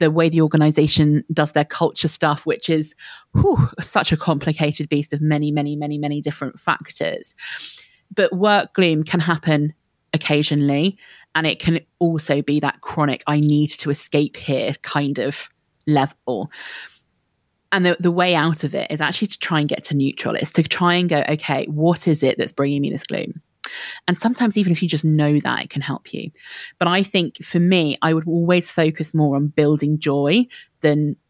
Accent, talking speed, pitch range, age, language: British, 185 wpm, 150-175 Hz, 20-39, English